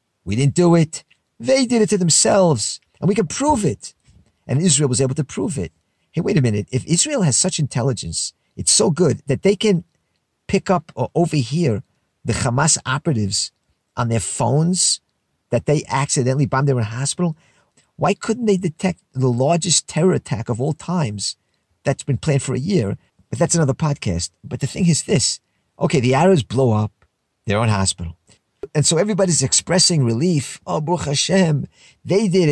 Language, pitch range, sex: English, 125-185 Hz, male